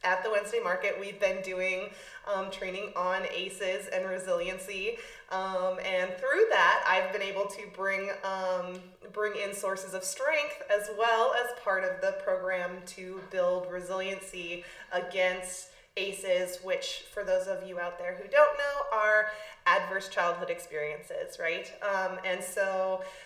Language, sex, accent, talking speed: English, female, American, 150 wpm